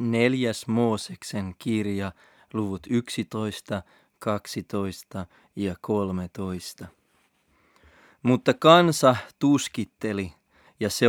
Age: 30-49